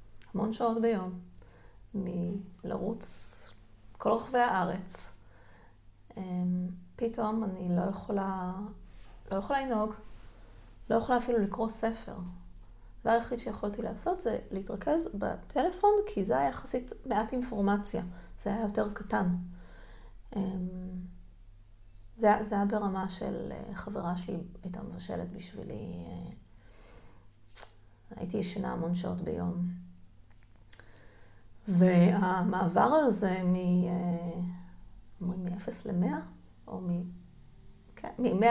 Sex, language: female, Hebrew